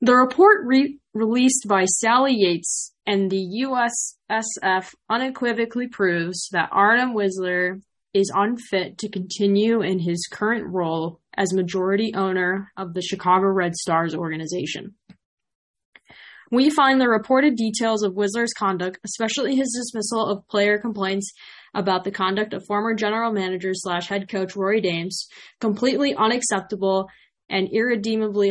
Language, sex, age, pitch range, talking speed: English, female, 10-29, 185-225 Hz, 130 wpm